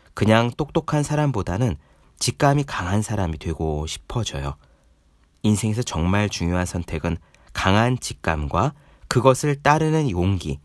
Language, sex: Korean, male